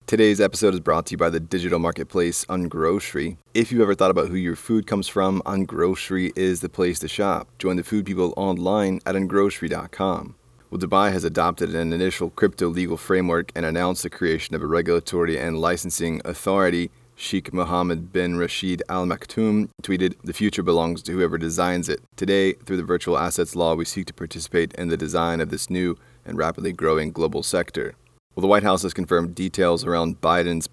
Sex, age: male, 30-49